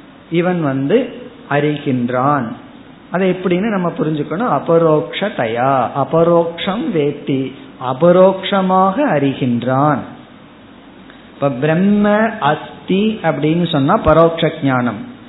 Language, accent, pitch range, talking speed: Tamil, native, 145-195 Hz, 45 wpm